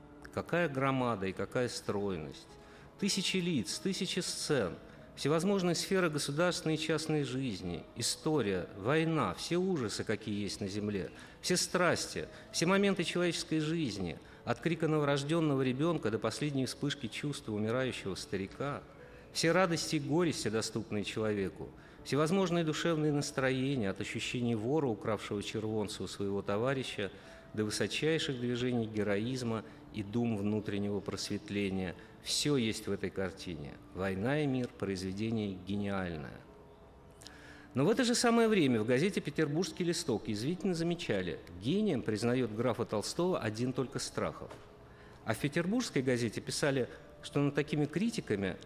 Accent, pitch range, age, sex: native, 105-155 Hz, 50-69, male